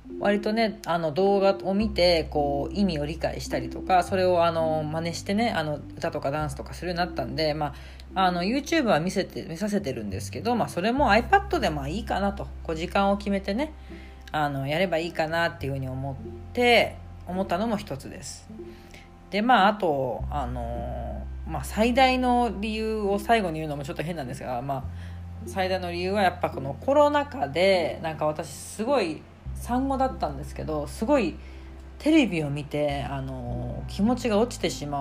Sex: female